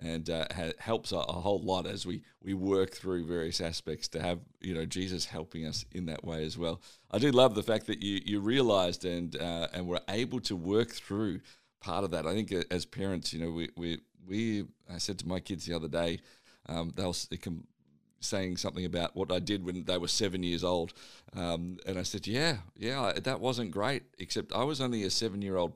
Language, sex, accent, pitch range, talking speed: English, male, Australian, 85-110 Hz, 215 wpm